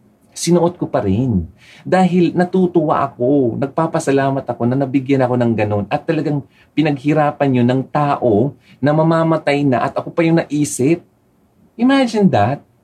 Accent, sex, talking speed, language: native, male, 140 wpm, Filipino